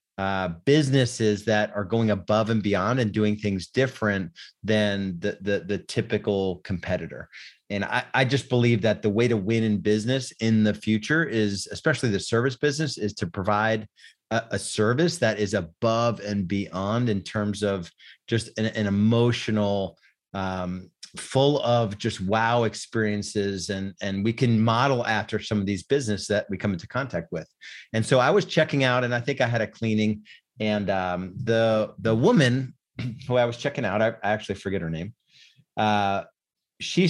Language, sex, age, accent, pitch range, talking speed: English, male, 30-49, American, 100-120 Hz, 175 wpm